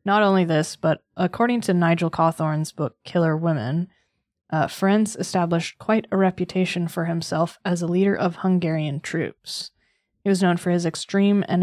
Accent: American